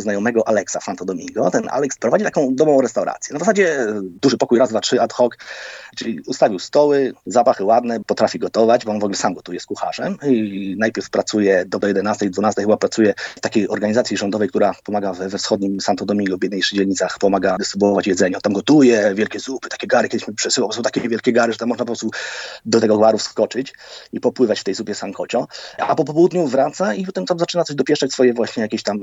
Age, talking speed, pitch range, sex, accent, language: 30-49, 210 wpm, 100-125 Hz, male, native, Polish